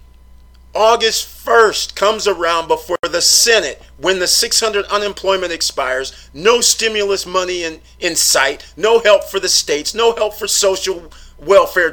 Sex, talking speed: male, 140 wpm